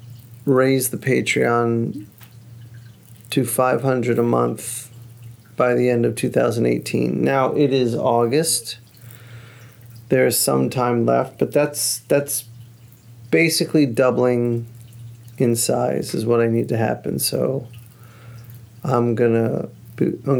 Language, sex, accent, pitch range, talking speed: English, male, American, 115-130 Hz, 110 wpm